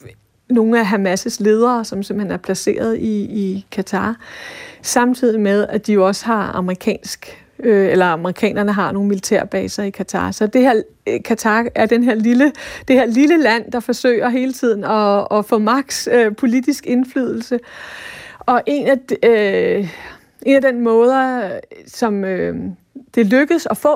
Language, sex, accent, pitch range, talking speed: Danish, female, native, 195-235 Hz, 155 wpm